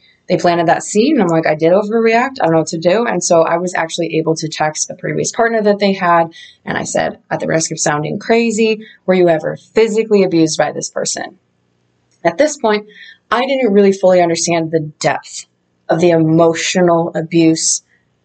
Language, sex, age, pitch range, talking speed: English, female, 20-39, 160-190 Hz, 200 wpm